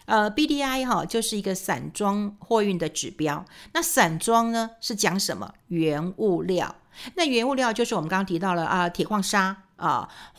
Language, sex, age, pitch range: Chinese, female, 50-69, 175-230 Hz